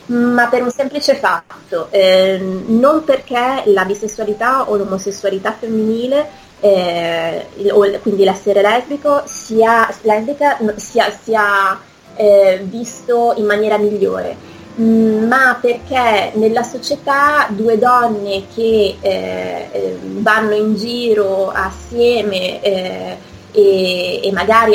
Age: 20-39